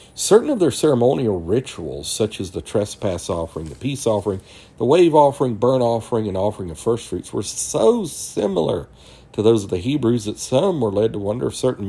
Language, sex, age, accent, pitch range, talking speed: English, male, 50-69, American, 90-115 Hz, 195 wpm